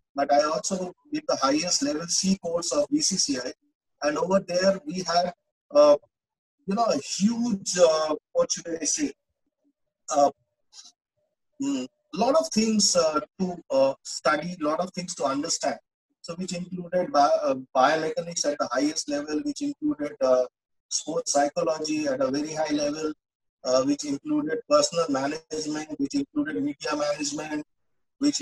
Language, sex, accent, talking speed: English, male, Indian, 150 wpm